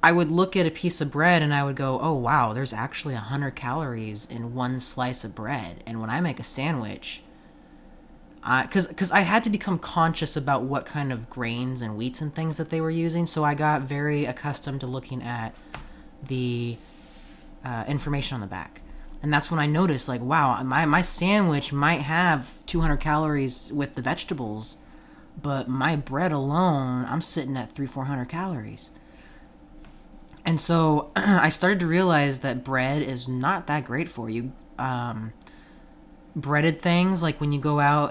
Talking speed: 175 wpm